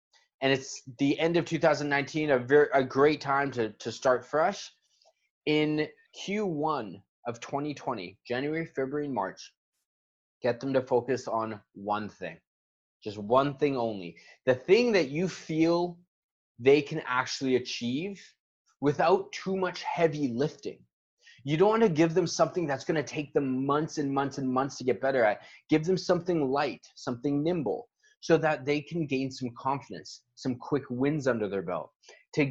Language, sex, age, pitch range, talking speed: English, male, 20-39, 125-165 Hz, 165 wpm